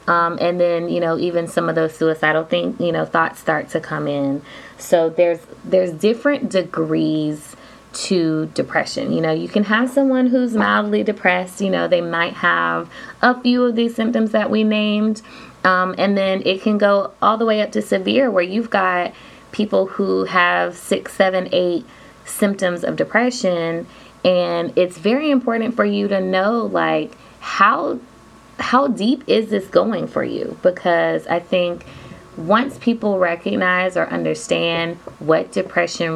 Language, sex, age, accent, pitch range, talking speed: English, female, 20-39, American, 160-220 Hz, 165 wpm